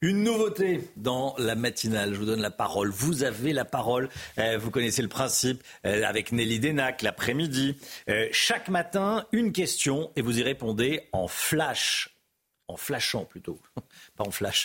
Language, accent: French, French